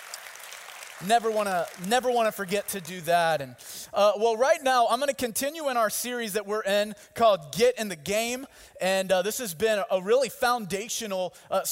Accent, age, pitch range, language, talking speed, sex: American, 30-49, 195-255 Hz, English, 195 wpm, male